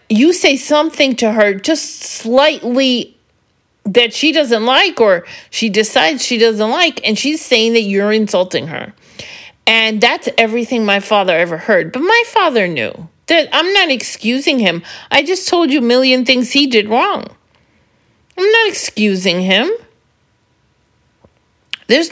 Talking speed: 150 wpm